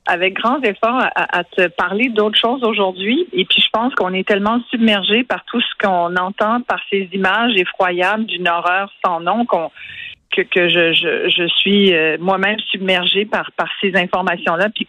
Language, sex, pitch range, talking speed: French, female, 175-210 Hz, 185 wpm